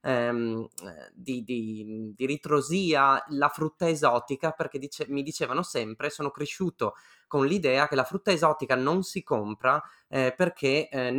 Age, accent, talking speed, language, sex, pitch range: 20-39, native, 130 wpm, Italian, male, 130-165 Hz